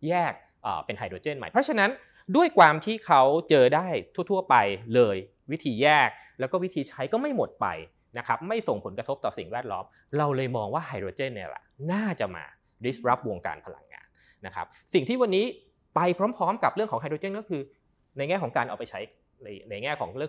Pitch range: 135-210 Hz